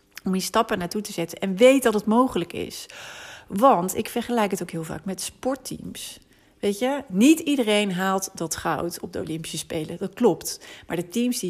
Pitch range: 165-210 Hz